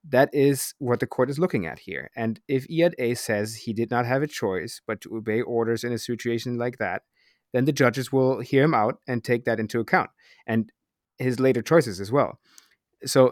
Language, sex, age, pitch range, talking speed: English, male, 30-49, 110-135 Hz, 215 wpm